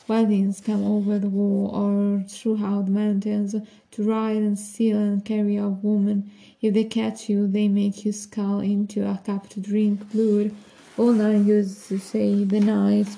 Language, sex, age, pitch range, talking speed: English, female, 20-39, 195-210 Hz, 175 wpm